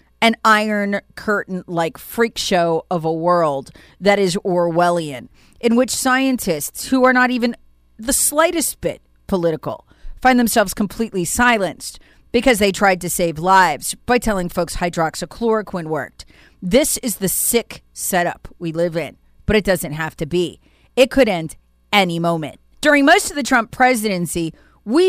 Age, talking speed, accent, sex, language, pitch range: 40-59, 155 wpm, American, female, English, 175-245 Hz